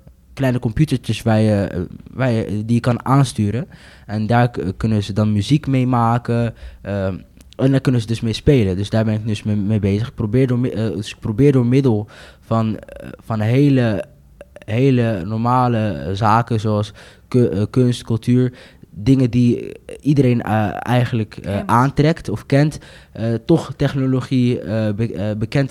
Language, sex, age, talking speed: Dutch, male, 20-39, 135 wpm